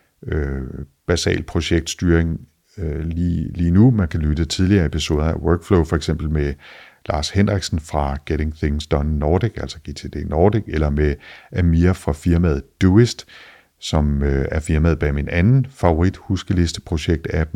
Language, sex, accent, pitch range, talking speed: Danish, male, native, 80-95 Hz, 155 wpm